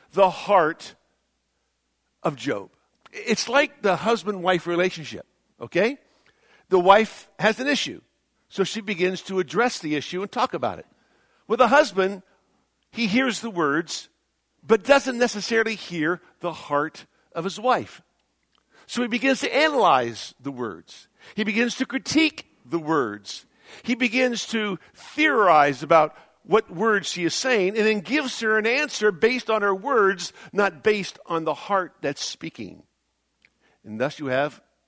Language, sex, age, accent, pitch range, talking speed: English, male, 50-69, American, 160-230 Hz, 150 wpm